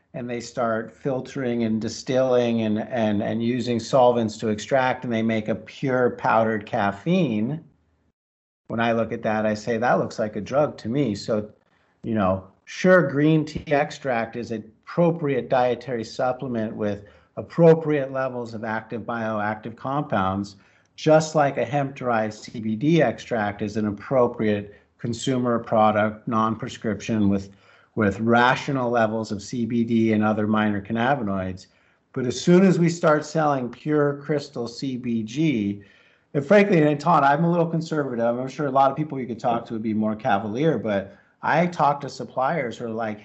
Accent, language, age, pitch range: American, English, 50-69, 110-140 Hz